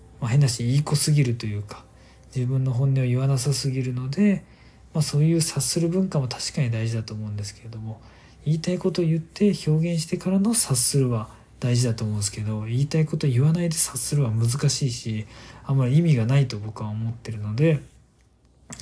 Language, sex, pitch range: Japanese, male, 115-145 Hz